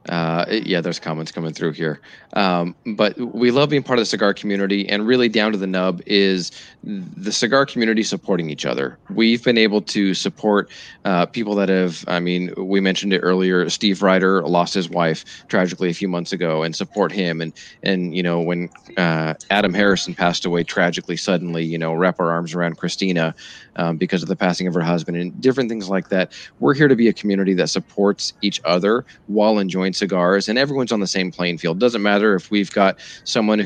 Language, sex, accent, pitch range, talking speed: English, male, American, 90-105 Hz, 205 wpm